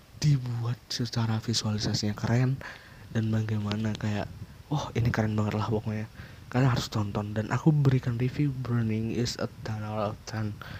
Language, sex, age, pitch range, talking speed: Indonesian, male, 20-39, 110-125 Hz, 135 wpm